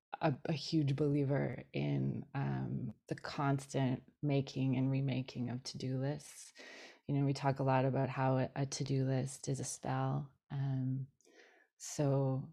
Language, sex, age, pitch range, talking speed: English, female, 20-39, 130-140 Hz, 155 wpm